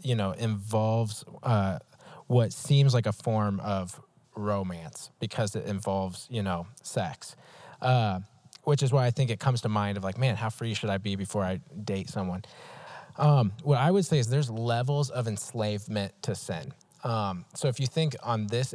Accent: American